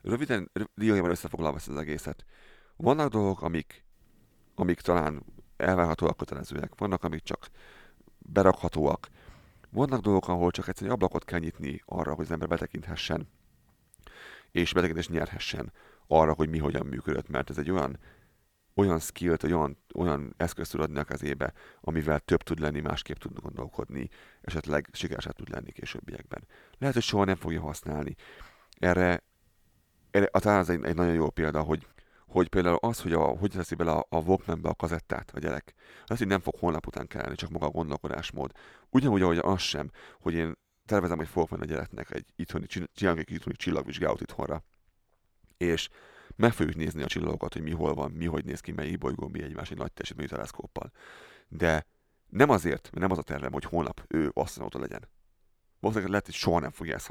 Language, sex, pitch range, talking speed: Hungarian, male, 75-95 Hz, 170 wpm